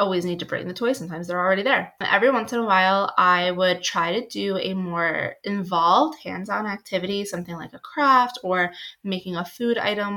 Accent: American